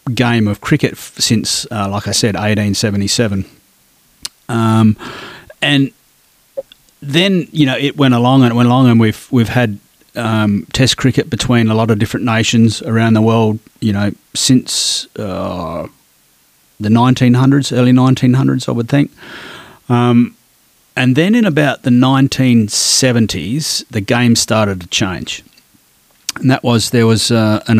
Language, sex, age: English, male, 30-49